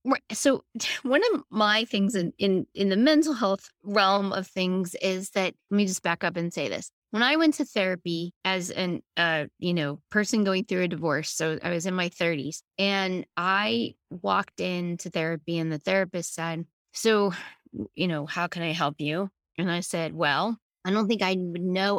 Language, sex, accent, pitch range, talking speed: English, female, American, 180-235 Hz, 195 wpm